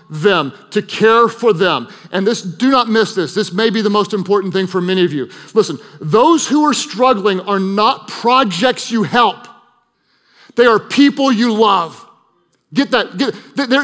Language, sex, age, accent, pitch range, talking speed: English, male, 40-59, American, 190-260 Hz, 175 wpm